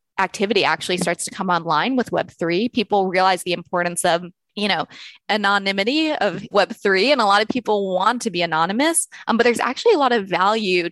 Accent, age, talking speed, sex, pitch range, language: American, 20-39, 190 wpm, female, 170-205 Hz, English